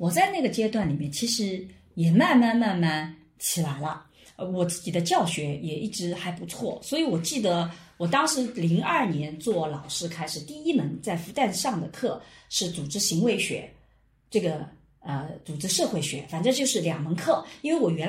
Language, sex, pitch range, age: Chinese, female, 165-240 Hz, 40-59